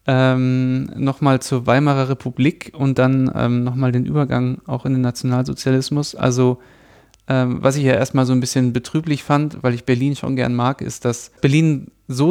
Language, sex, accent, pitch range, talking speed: German, male, German, 125-145 Hz, 175 wpm